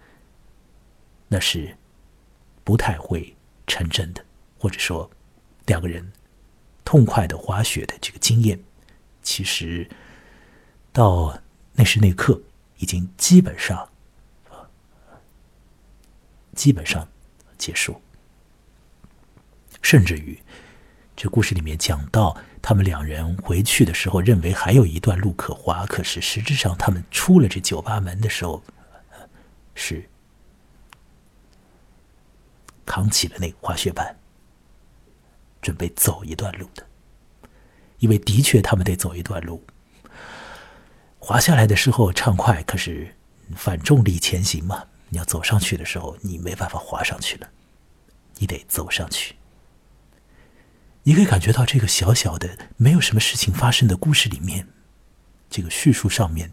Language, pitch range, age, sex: Chinese, 85-110 Hz, 50-69, male